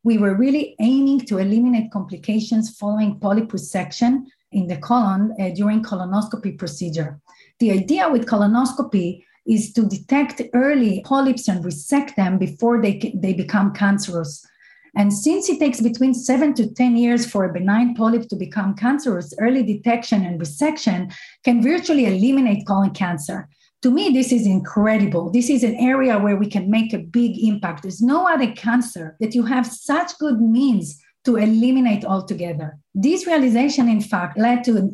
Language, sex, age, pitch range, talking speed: English, female, 30-49, 195-255 Hz, 165 wpm